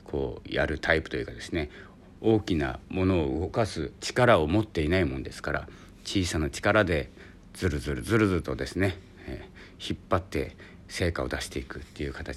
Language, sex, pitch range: Japanese, male, 85-105 Hz